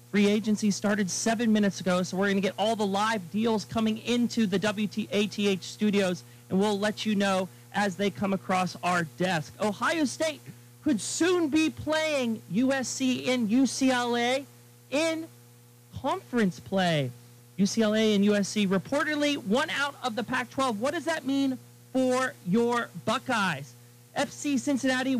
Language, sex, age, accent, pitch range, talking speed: English, male, 40-59, American, 185-250 Hz, 145 wpm